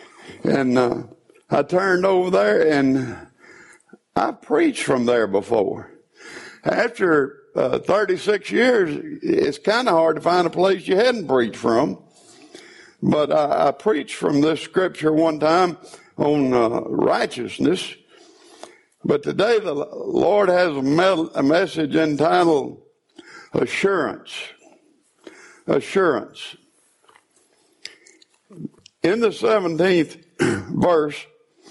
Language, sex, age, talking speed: English, male, 60-79, 105 wpm